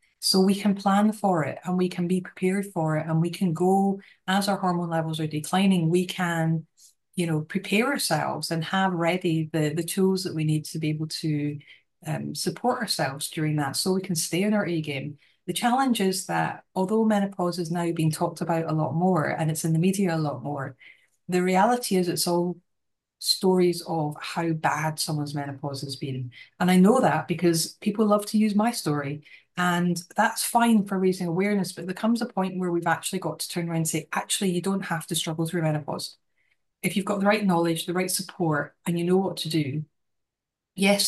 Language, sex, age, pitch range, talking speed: English, female, 30-49, 160-190 Hz, 210 wpm